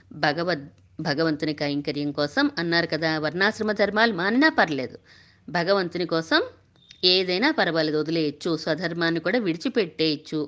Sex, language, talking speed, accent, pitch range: female, Telugu, 105 wpm, native, 160-230 Hz